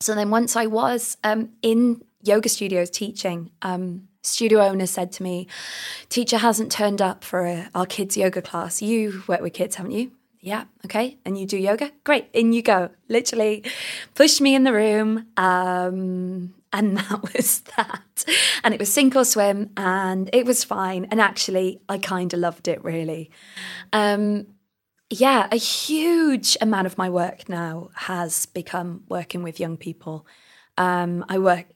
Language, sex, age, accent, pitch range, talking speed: English, female, 20-39, British, 180-230 Hz, 170 wpm